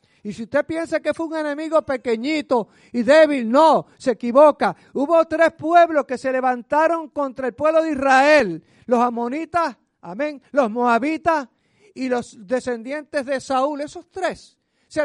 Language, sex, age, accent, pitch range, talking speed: Spanish, male, 50-69, American, 265-320 Hz, 150 wpm